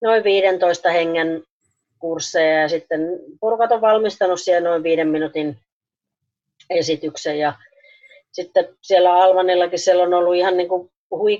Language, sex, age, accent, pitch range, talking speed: Finnish, female, 30-49, native, 155-185 Hz, 120 wpm